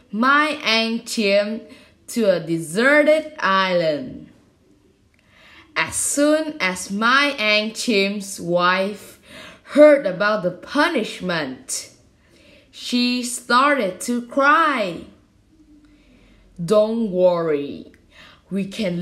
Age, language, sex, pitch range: 10-29, Vietnamese, female, 190-285 Hz